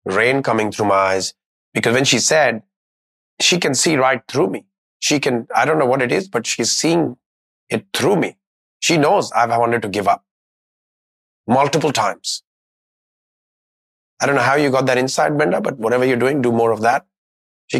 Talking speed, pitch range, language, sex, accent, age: 190 wpm, 95-120 Hz, English, male, Indian, 30-49